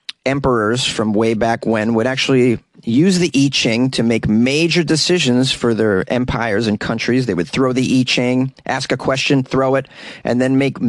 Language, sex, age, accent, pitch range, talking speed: English, male, 40-59, American, 110-150 Hz, 185 wpm